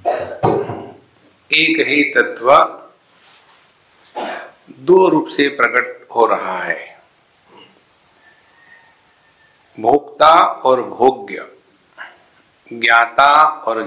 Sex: male